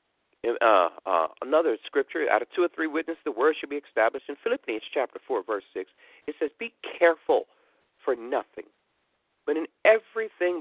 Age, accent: 50-69, American